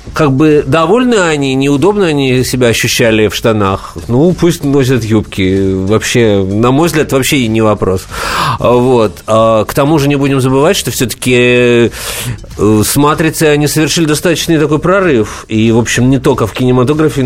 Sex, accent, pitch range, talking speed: male, native, 110-140 Hz, 160 wpm